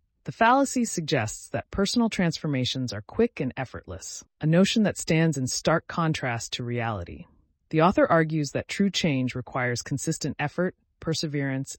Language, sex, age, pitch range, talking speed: English, female, 30-49, 120-170 Hz, 150 wpm